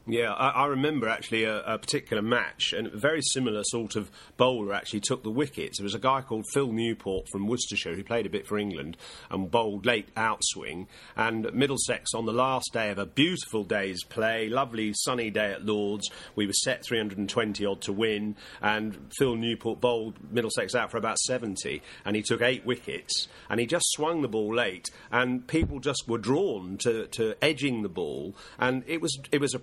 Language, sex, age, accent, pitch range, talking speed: English, male, 40-59, British, 105-130 Hz, 200 wpm